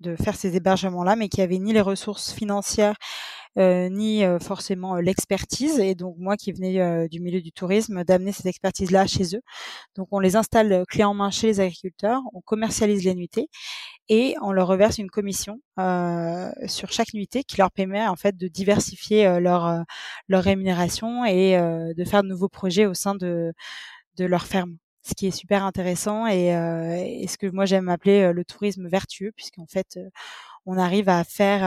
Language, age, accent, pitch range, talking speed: French, 20-39, French, 175-200 Hz, 195 wpm